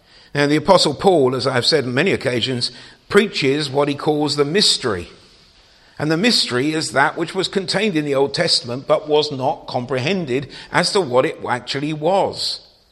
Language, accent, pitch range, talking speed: English, British, 120-155 Hz, 175 wpm